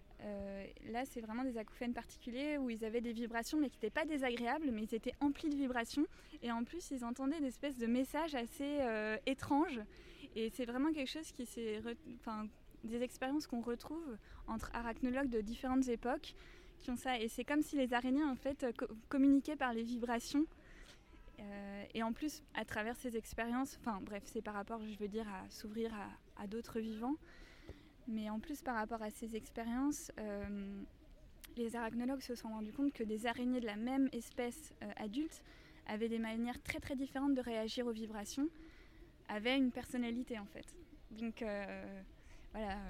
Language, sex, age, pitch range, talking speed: French, female, 20-39, 220-270 Hz, 185 wpm